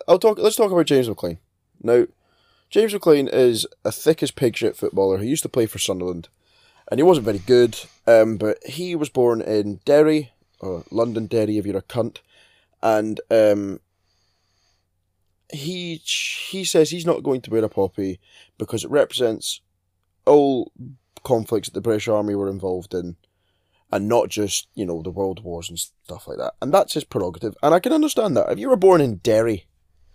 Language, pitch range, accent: English, 95-130 Hz, British